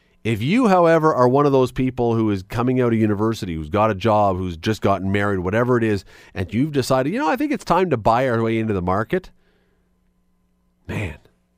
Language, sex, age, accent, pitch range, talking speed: English, male, 40-59, American, 95-140 Hz, 220 wpm